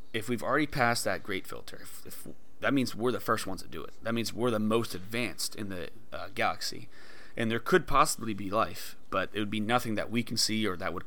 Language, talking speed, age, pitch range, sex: English, 240 wpm, 30-49, 95-125 Hz, male